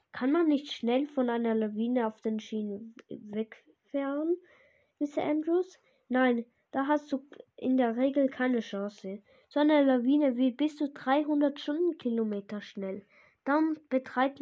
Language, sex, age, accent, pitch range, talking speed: German, female, 10-29, German, 230-280 Hz, 135 wpm